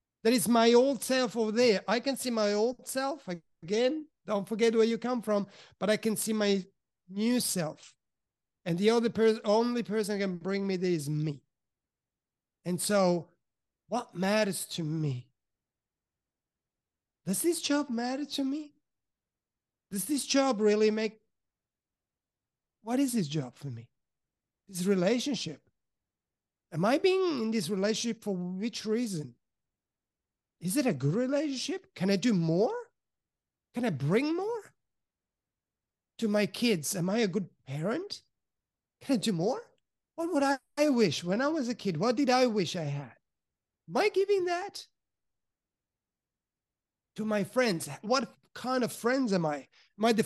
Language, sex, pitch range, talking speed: English, male, 190-255 Hz, 155 wpm